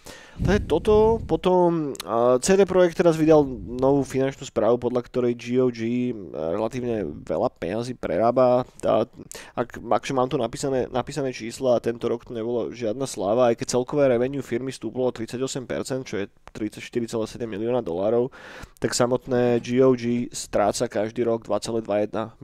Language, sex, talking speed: Slovak, male, 140 wpm